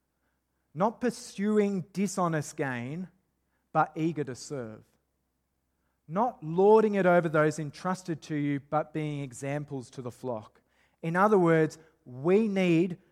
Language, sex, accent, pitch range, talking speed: English, male, Australian, 130-180 Hz, 125 wpm